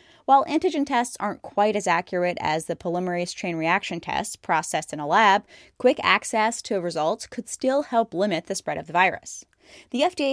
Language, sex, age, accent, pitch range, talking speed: English, female, 10-29, American, 175-225 Hz, 185 wpm